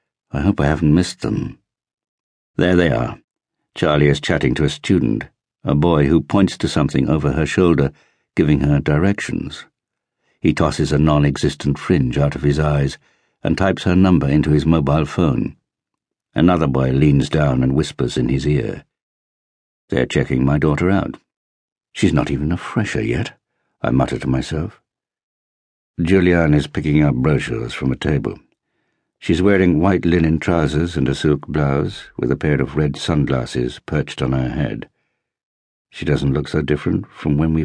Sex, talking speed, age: male, 165 wpm, 60-79